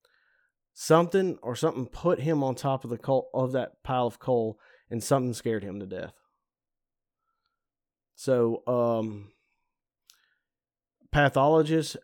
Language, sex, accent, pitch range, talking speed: English, male, American, 120-160 Hz, 120 wpm